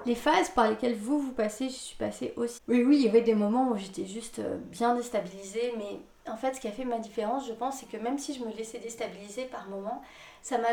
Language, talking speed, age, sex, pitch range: French, 255 wpm, 30-49, female, 220-260 Hz